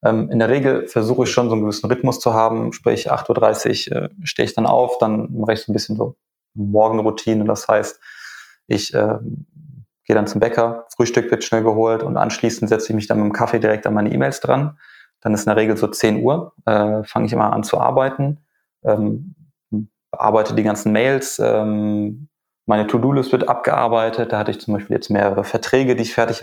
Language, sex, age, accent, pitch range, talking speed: German, male, 20-39, German, 105-120 Hz, 195 wpm